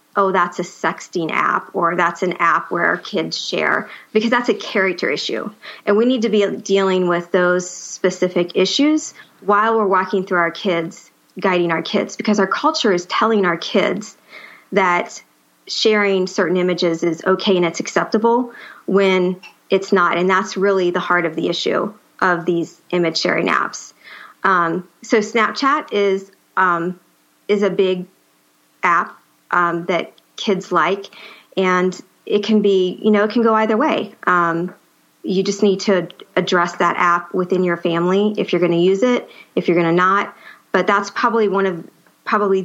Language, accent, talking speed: English, American, 175 wpm